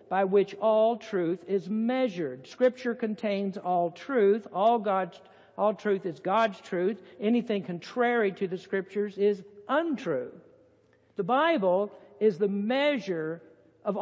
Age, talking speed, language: 60-79, 125 wpm, English